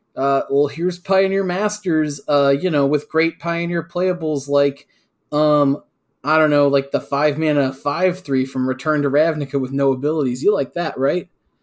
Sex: male